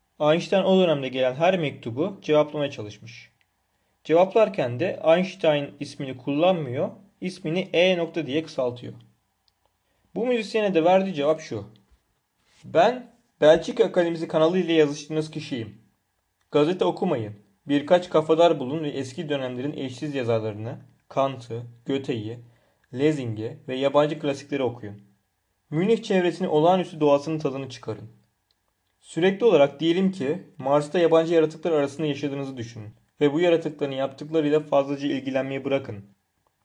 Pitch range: 120-160 Hz